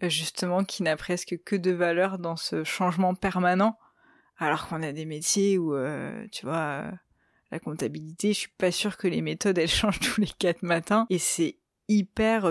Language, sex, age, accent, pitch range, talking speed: French, female, 20-39, French, 165-200 Hz, 180 wpm